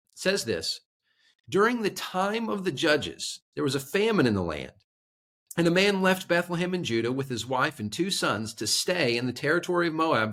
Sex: male